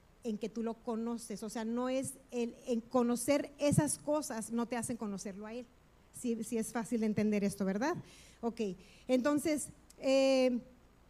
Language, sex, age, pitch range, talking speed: Spanish, female, 40-59, 235-300 Hz, 155 wpm